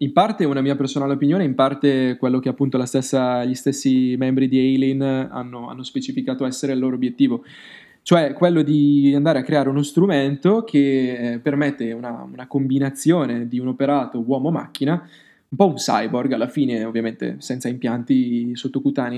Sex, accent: male, native